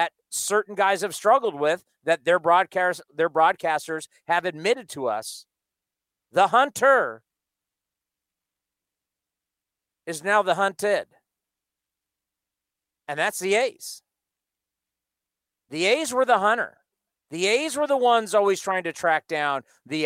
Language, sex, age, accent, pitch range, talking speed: English, male, 50-69, American, 150-200 Hz, 120 wpm